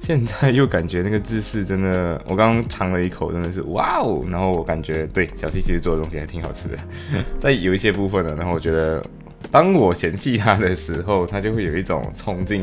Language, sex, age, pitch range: Chinese, male, 20-39, 85-110 Hz